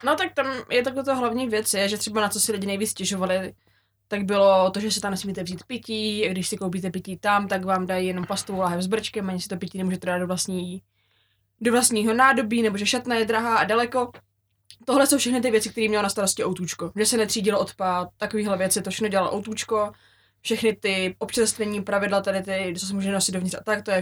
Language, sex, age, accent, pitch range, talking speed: Czech, female, 20-39, native, 185-220 Hz, 220 wpm